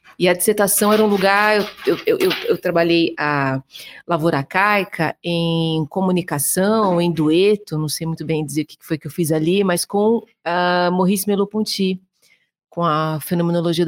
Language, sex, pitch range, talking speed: Portuguese, female, 160-195 Hz, 175 wpm